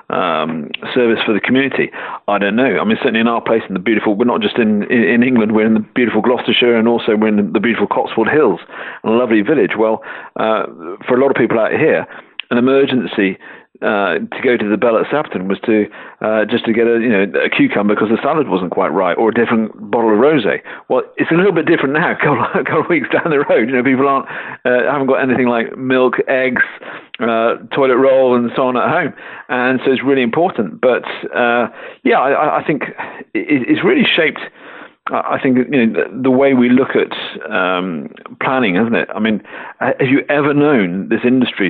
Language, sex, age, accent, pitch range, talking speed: English, male, 50-69, British, 110-130 Hz, 220 wpm